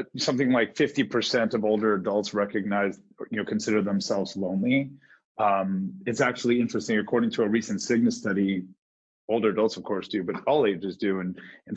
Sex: male